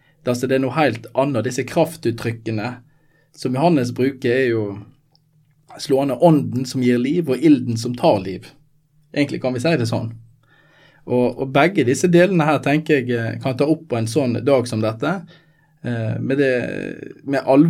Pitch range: 125-155 Hz